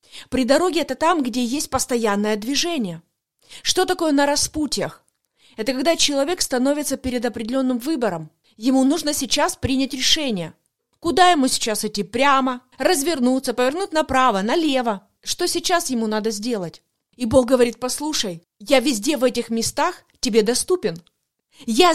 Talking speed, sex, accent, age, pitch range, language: 135 wpm, female, native, 30-49, 235-300 Hz, Russian